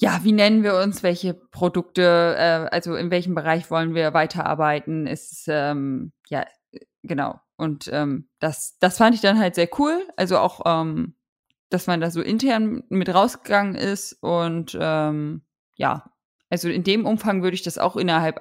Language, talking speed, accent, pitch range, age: German, 170 wpm, German, 160-185 Hz, 20-39